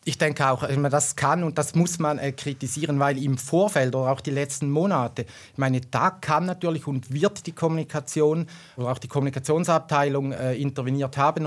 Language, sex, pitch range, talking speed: German, male, 130-155 Hz, 175 wpm